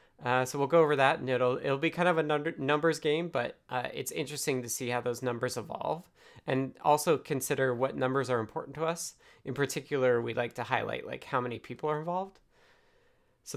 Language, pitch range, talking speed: English, 125-155 Hz, 210 wpm